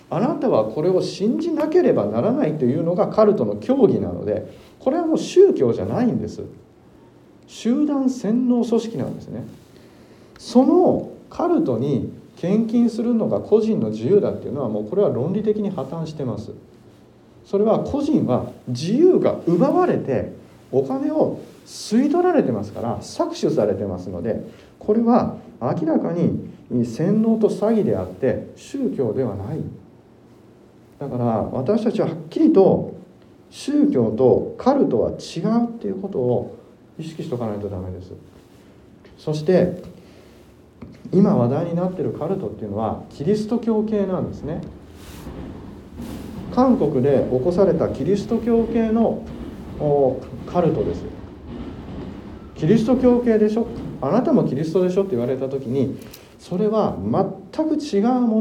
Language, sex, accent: Japanese, male, native